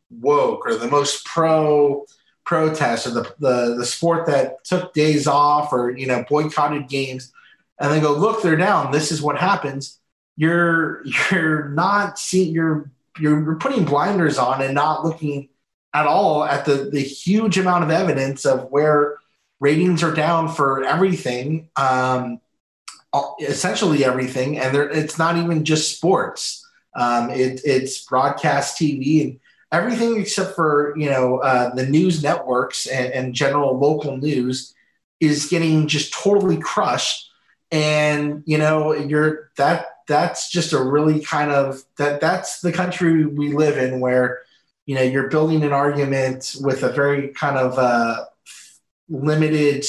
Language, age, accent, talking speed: English, 30-49, American, 150 wpm